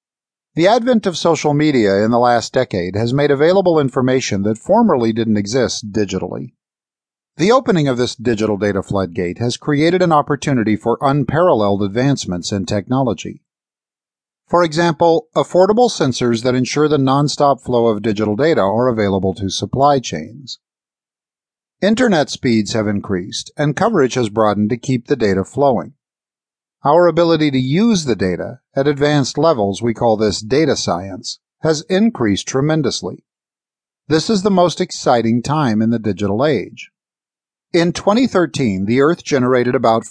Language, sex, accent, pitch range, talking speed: English, male, American, 110-160 Hz, 145 wpm